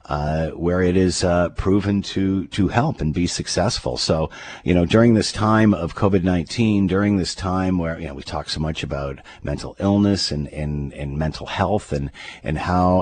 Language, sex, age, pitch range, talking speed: English, male, 50-69, 75-95 Hz, 195 wpm